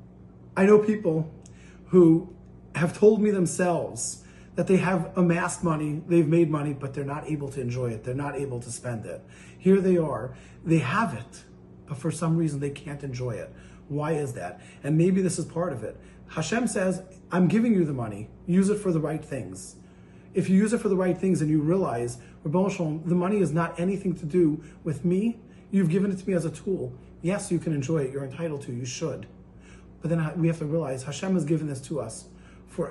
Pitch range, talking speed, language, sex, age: 135-175 Hz, 215 wpm, English, male, 30-49